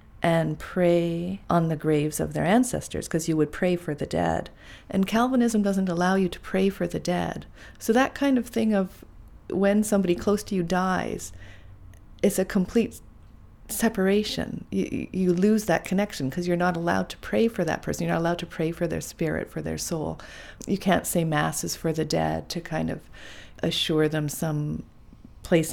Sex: female